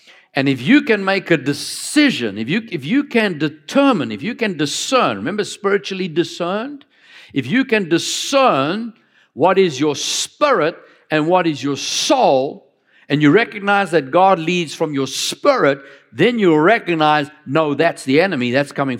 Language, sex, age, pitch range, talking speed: English, male, 60-79, 140-195 Hz, 160 wpm